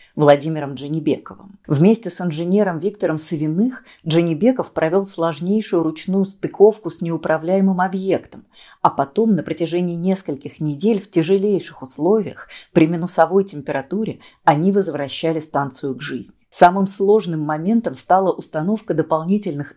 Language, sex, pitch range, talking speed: Russian, female, 155-190 Hz, 115 wpm